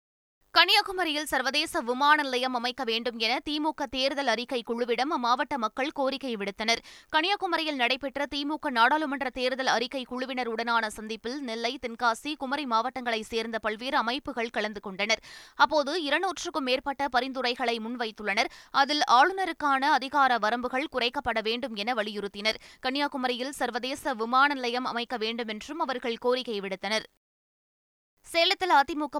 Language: Tamil